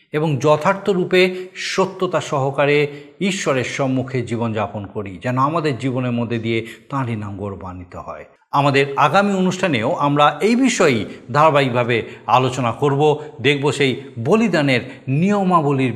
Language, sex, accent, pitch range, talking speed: Bengali, male, native, 120-160 Hz, 115 wpm